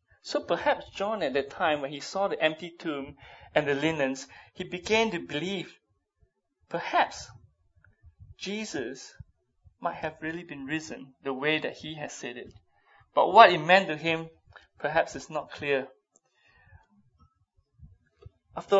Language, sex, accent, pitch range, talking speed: English, male, Malaysian, 140-185 Hz, 140 wpm